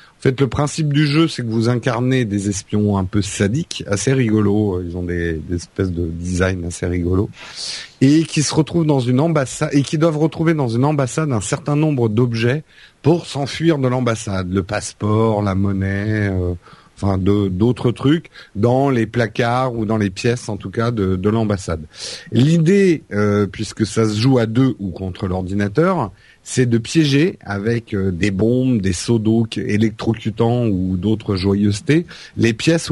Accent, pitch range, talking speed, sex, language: French, 100-140 Hz, 170 wpm, male, French